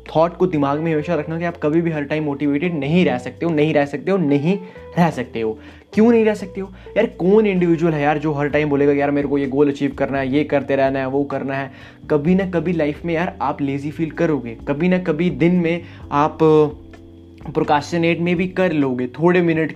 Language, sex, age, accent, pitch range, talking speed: Hindi, male, 20-39, native, 140-170 Hz, 230 wpm